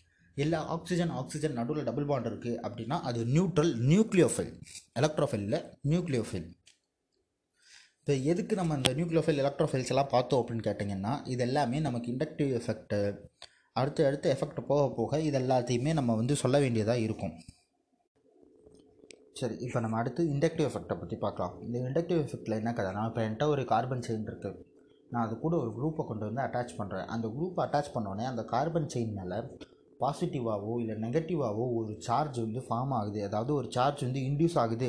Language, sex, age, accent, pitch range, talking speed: Tamil, male, 30-49, native, 115-145 Hz, 155 wpm